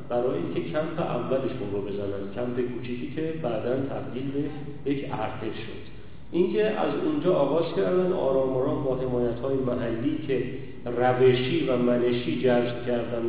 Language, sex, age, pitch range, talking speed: Persian, male, 40-59, 120-155 Hz, 135 wpm